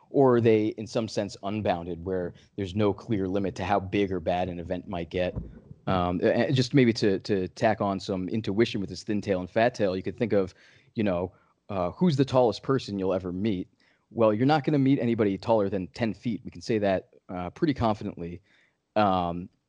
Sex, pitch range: male, 95-120 Hz